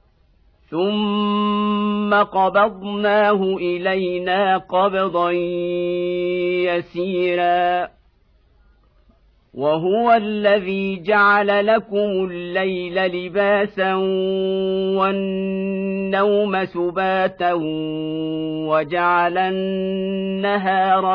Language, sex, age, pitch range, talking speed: Arabic, male, 50-69, 170-195 Hz, 45 wpm